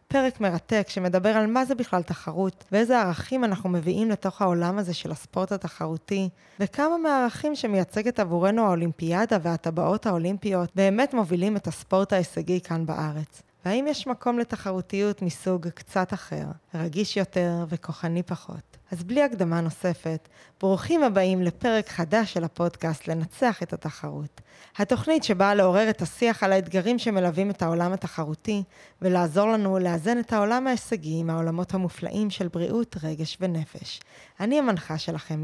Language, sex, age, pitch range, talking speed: Hebrew, female, 20-39, 170-210 Hz, 140 wpm